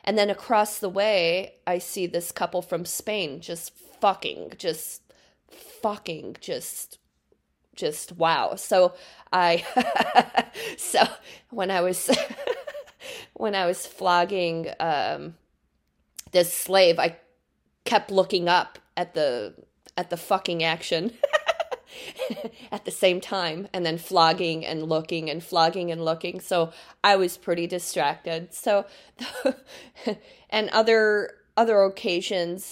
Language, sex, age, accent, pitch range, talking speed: English, female, 20-39, American, 165-205 Hz, 115 wpm